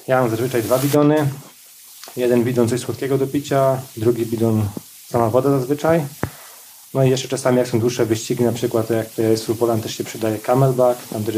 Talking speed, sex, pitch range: 190 wpm, male, 115-130 Hz